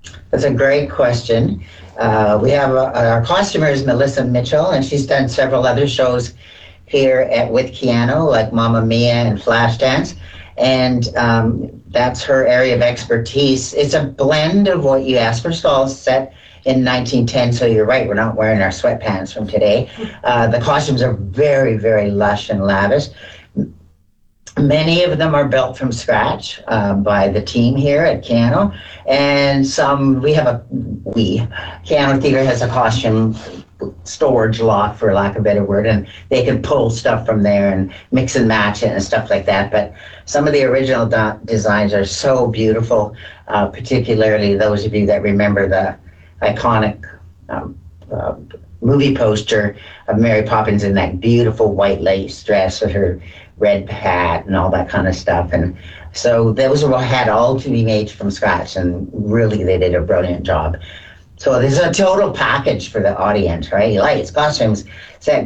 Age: 50-69